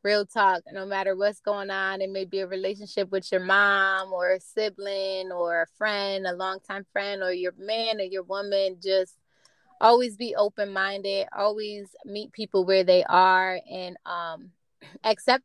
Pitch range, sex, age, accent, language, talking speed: 180-205 Hz, female, 20-39, American, English, 165 wpm